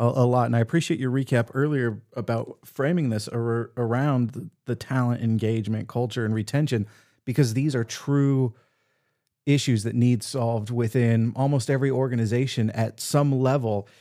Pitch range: 115-130 Hz